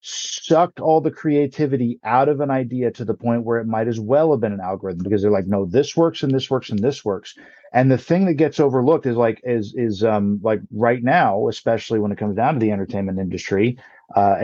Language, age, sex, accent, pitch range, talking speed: English, 40-59, male, American, 105-135 Hz, 235 wpm